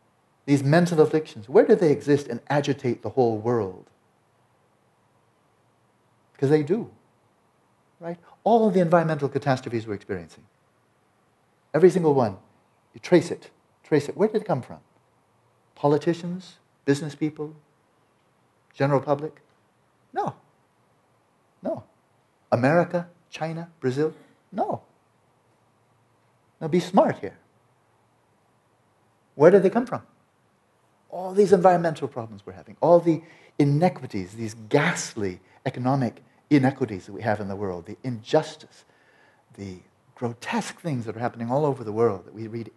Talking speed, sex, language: 125 wpm, male, English